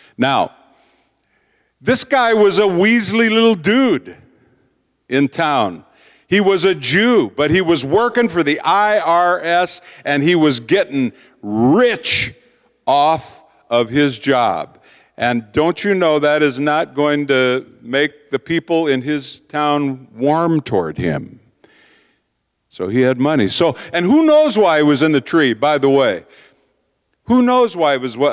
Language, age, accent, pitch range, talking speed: English, 50-69, American, 135-195 Hz, 150 wpm